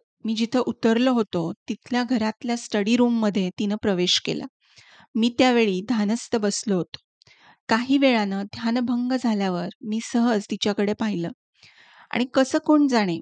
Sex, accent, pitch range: female, native, 210-255 Hz